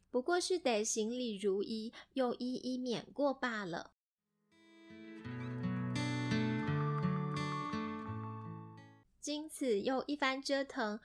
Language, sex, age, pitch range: Chinese, female, 10-29, 220-280 Hz